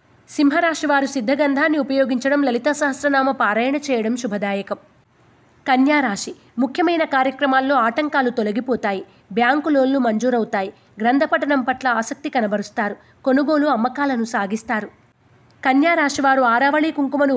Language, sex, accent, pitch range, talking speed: Telugu, female, native, 235-290 Hz, 95 wpm